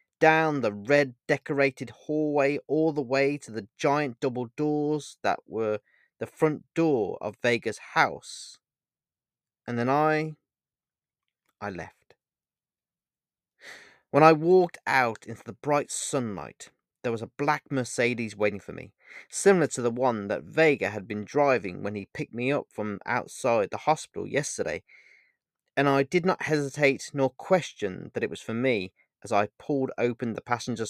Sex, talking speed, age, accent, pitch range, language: male, 155 wpm, 30-49, British, 115-145 Hz, English